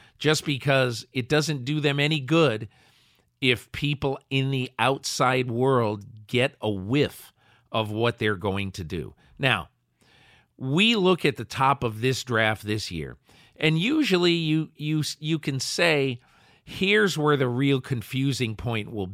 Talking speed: 150 wpm